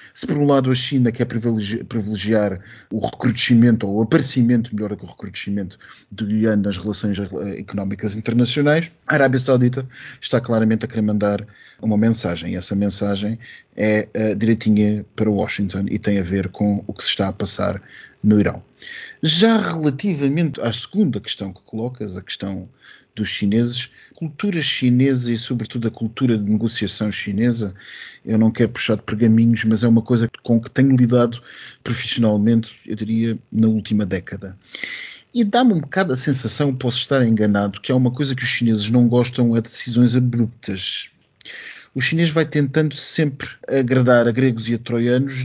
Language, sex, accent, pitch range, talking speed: Portuguese, male, Portuguese, 110-130 Hz, 170 wpm